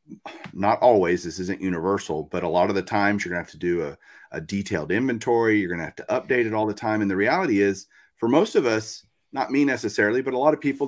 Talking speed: 260 wpm